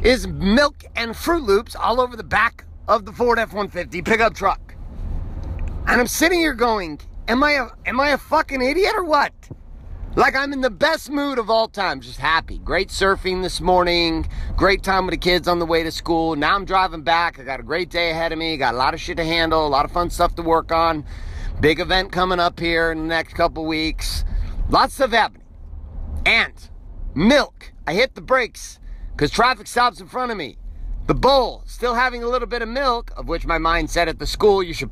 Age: 40-59